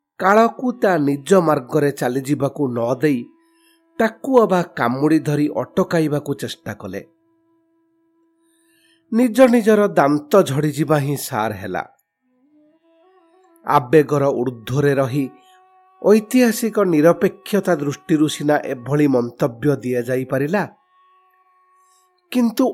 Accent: Indian